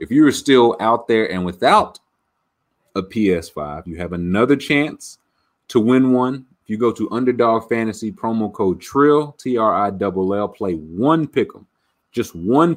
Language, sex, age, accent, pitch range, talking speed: English, male, 30-49, American, 95-130 Hz, 175 wpm